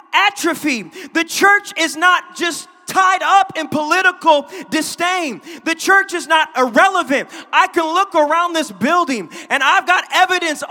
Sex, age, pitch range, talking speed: male, 30-49, 255-335 Hz, 145 wpm